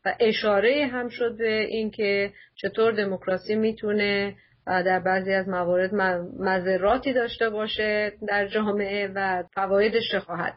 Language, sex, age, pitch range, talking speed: Persian, female, 40-59, 195-250 Hz, 130 wpm